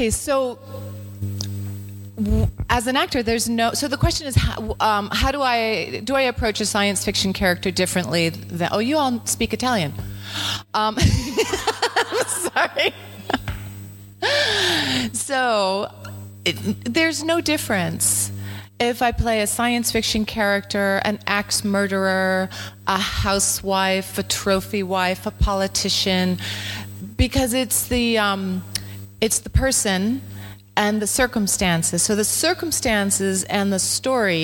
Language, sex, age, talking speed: Italian, female, 30-49, 125 wpm